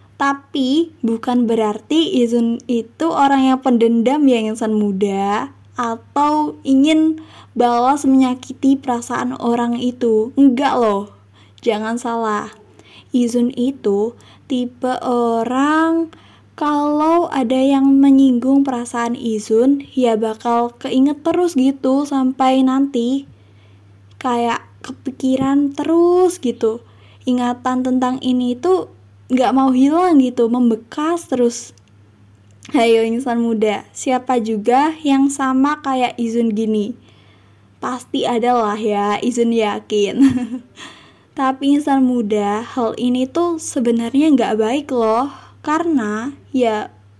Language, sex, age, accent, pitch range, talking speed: Indonesian, female, 20-39, native, 225-270 Hz, 105 wpm